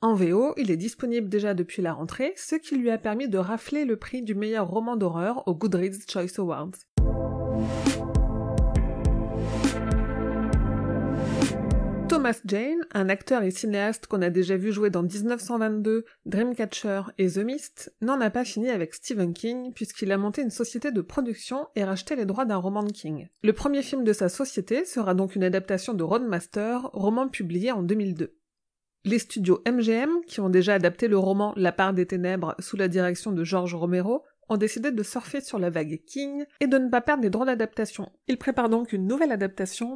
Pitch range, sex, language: 190-245 Hz, female, French